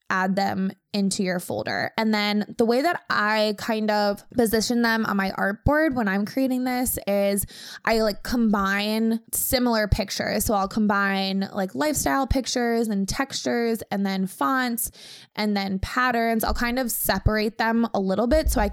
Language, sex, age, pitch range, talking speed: English, female, 20-39, 195-235 Hz, 165 wpm